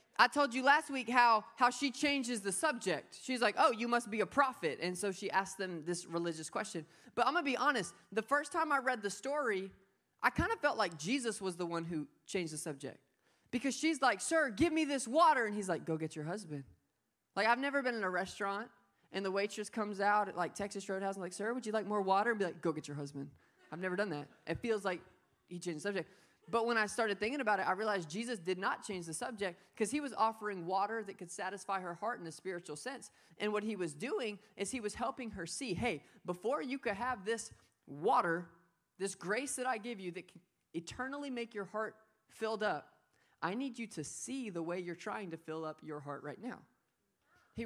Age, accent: 20-39, American